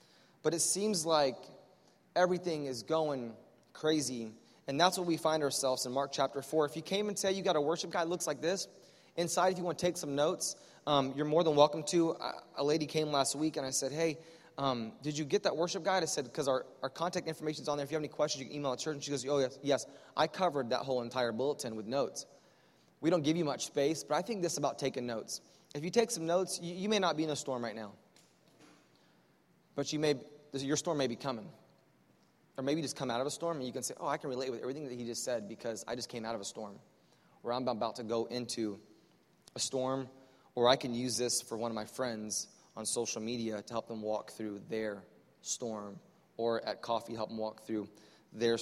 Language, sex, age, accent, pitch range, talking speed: English, male, 20-39, American, 120-160 Hz, 245 wpm